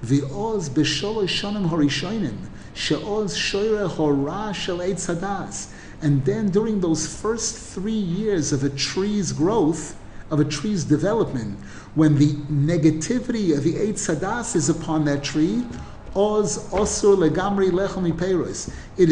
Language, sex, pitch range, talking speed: English, male, 150-200 Hz, 95 wpm